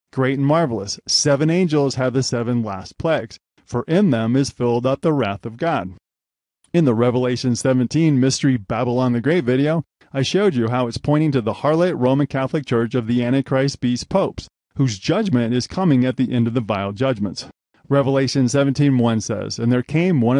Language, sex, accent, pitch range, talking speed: English, male, American, 120-145 Hz, 195 wpm